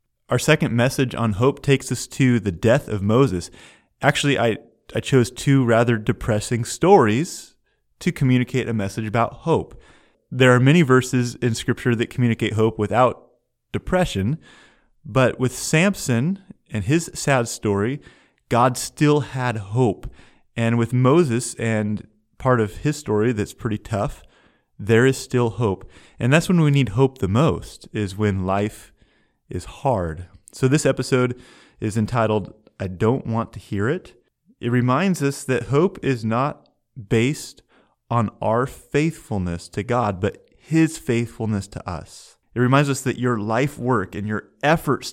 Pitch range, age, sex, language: 105-135 Hz, 30-49, male, English